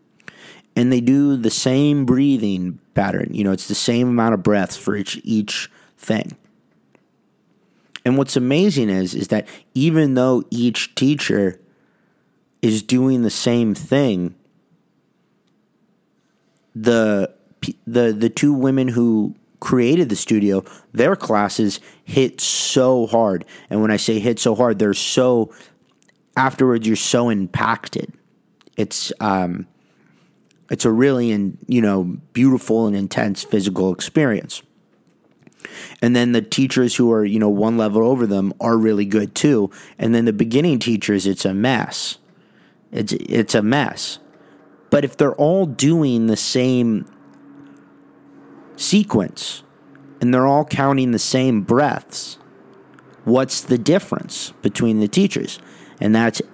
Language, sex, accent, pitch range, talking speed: English, male, American, 105-130 Hz, 135 wpm